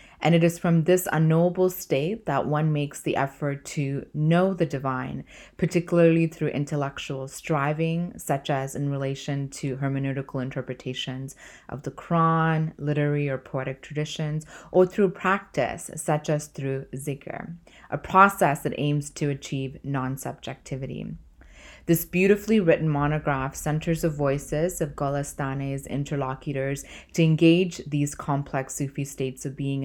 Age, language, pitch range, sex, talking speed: 20-39, English, 140-160 Hz, female, 135 wpm